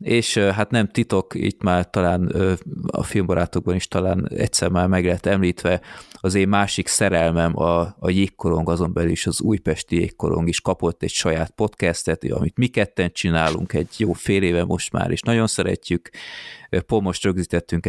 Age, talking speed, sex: 30-49, 165 wpm, male